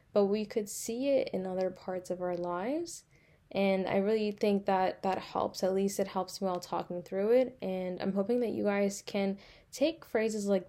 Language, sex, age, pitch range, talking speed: English, female, 10-29, 190-225 Hz, 210 wpm